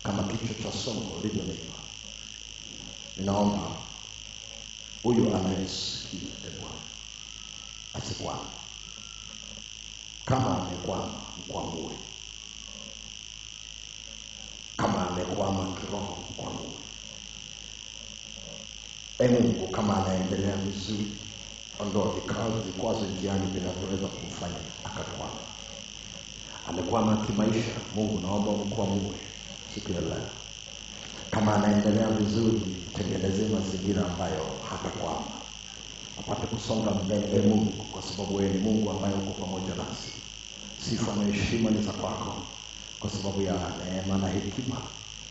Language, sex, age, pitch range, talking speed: Swahili, male, 40-59, 95-105 Hz, 90 wpm